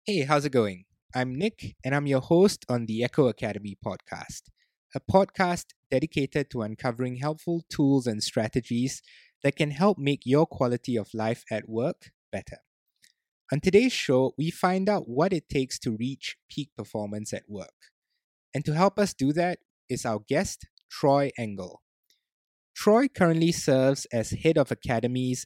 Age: 20-39